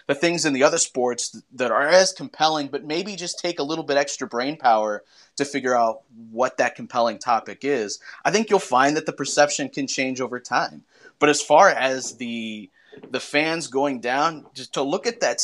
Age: 30-49